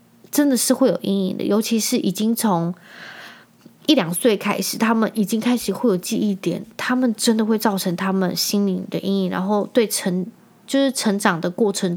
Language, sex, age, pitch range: Chinese, female, 20-39, 190-230 Hz